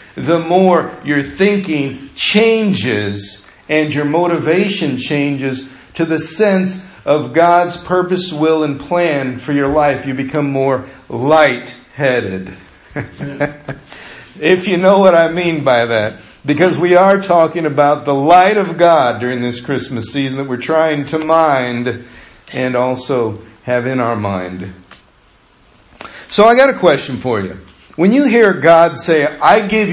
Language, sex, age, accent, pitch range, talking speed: English, male, 50-69, American, 130-180 Hz, 140 wpm